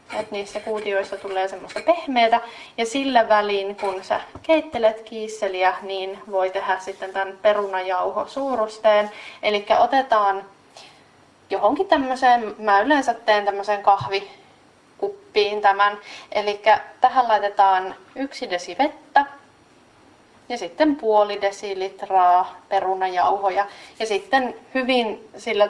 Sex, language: female, Finnish